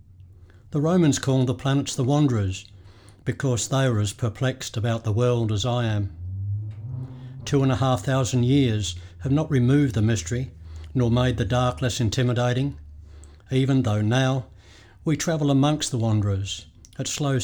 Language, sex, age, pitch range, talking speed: English, male, 60-79, 100-130 Hz, 155 wpm